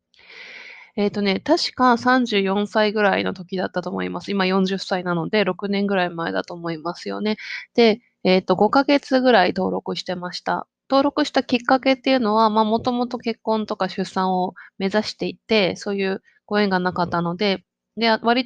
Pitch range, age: 185-235 Hz, 20-39